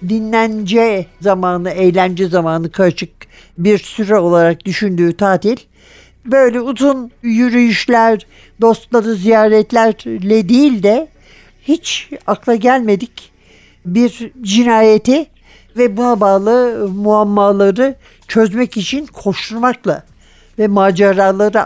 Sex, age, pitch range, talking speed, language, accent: male, 60-79, 195-265 Hz, 85 wpm, Turkish, native